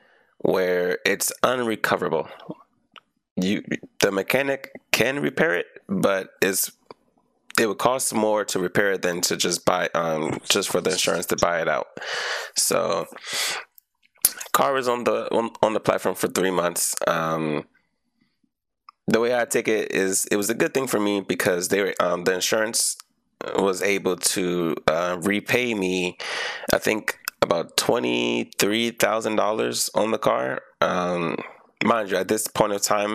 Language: English